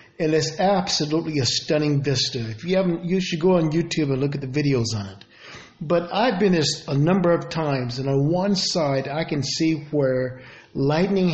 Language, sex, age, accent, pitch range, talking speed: English, male, 50-69, American, 145-185 Hz, 200 wpm